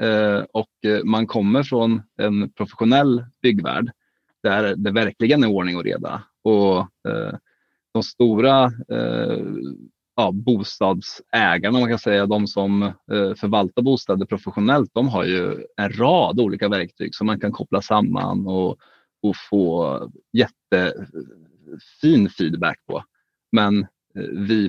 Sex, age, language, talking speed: male, 30-49, Swedish, 105 wpm